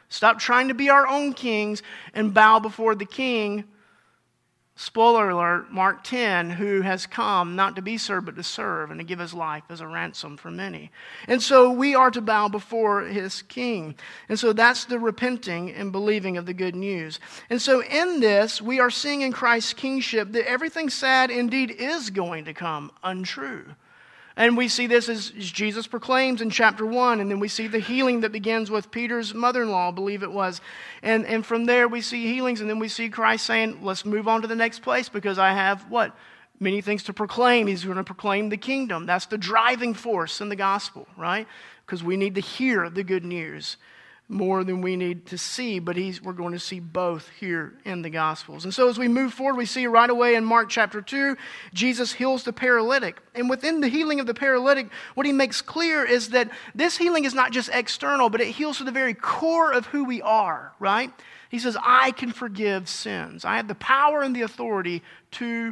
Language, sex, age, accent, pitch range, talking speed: English, male, 40-59, American, 195-250 Hz, 210 wpm